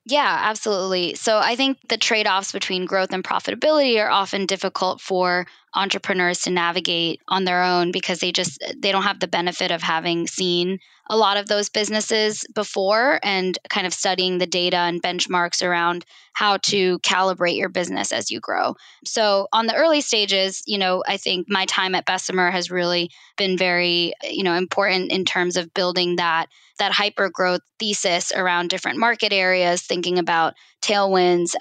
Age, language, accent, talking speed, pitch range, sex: 10-29, English, American, 175 wpm, 175-195 Hz, female